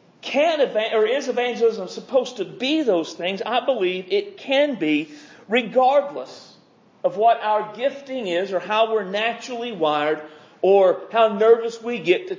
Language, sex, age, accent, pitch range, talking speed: English, male, 40-59, American, 200-260 Hz, 150 wpm